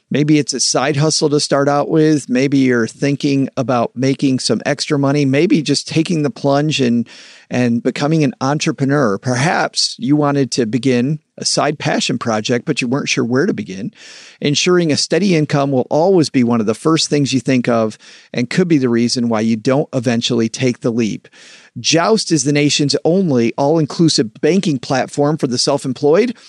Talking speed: 185 wpm